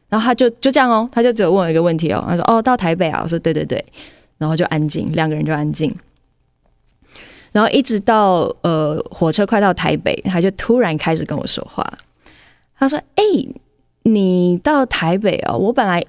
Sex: female